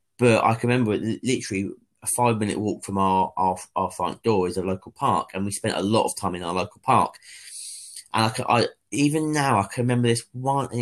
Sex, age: male, 30-49